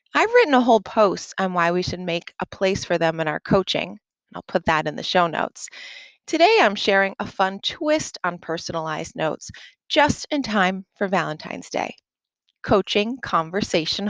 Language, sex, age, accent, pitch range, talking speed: English, female, 30-49, American, 180-270 Hz, 175 wpm